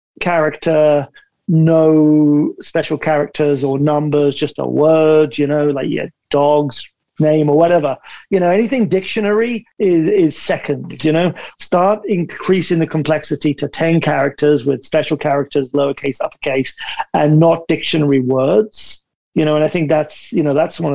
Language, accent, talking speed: English, British, 150 wpm